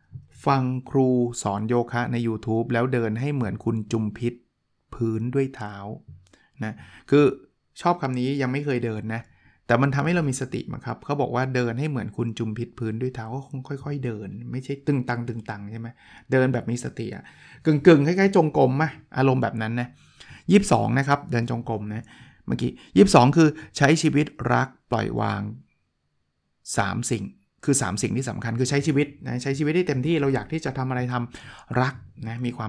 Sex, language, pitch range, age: male, Thai, 110-140 Hz, 20-39